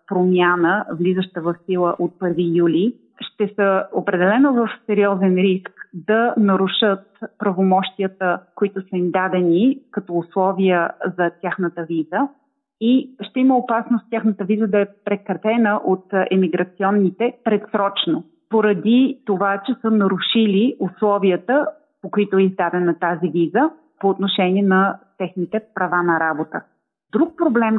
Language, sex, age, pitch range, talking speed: Bulgarian, female, 30-49, 185-225 Hz, 125 wpm